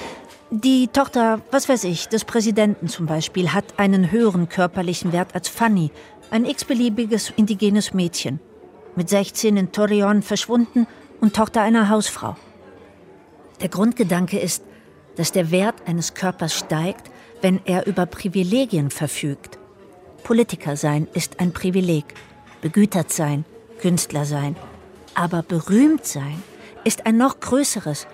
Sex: female